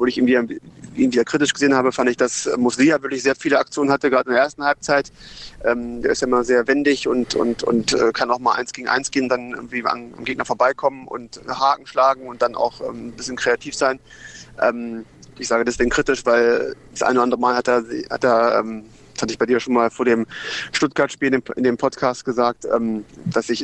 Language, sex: German, male